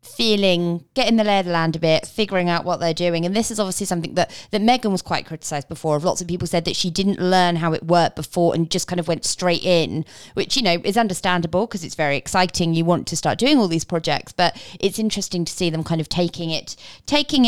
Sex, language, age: female, English, 20-39